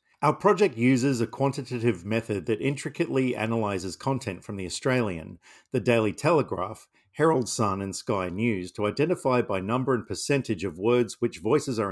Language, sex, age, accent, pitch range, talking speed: English, male, 50-69, Australian, 100-130 Hz, 160 wpm